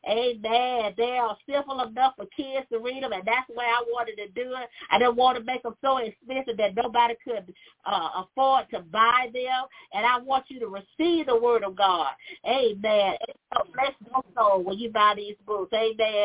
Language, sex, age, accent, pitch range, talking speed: English, female, 40-59, American, 225-280 Hz, 210 wpm